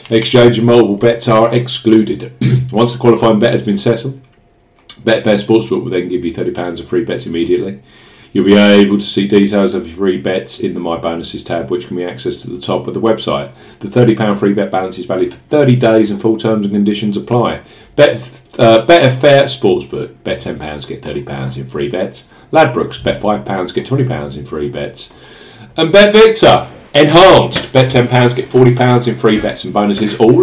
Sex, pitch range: male, 100-125 Hz